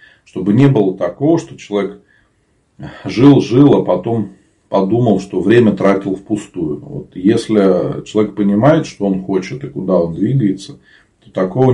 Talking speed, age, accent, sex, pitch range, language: 135 wpm, 40-59, native, male, 95-120 Hz, Russian